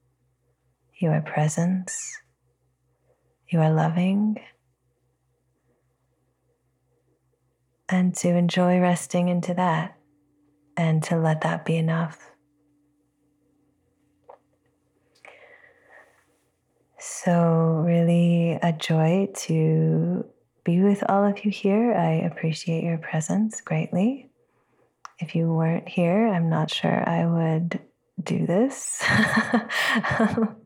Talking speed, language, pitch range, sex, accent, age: 90 wpm, English, 155-180 Hz, female, American, 30-49